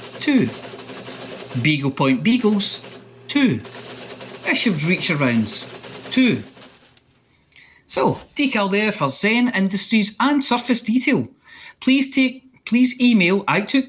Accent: British